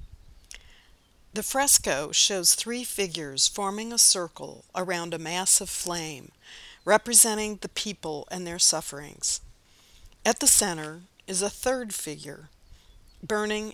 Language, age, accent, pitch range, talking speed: English, 50-69, American, 170-205 Hz, 120 wpm